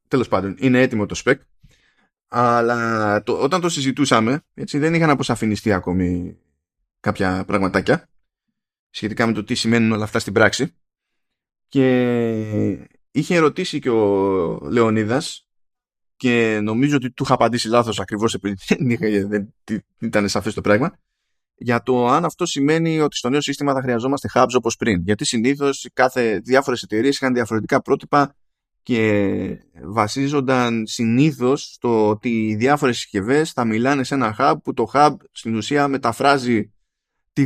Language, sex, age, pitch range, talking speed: Greek, male, 20-39, 105-135 Hz, 145 wpm